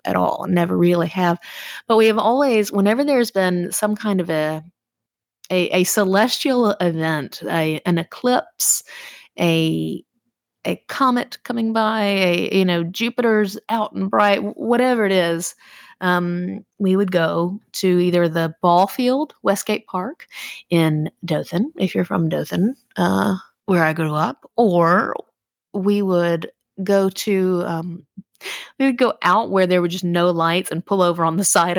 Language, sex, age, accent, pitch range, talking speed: English, female, 30-49, American, 170-205 Hz, 155 wpm